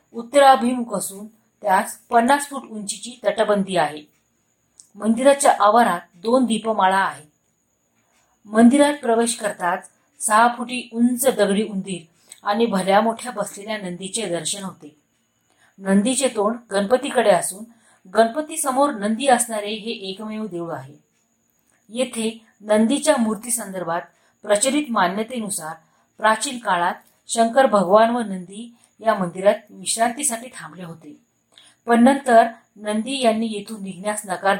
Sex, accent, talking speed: female, native, 110 wpm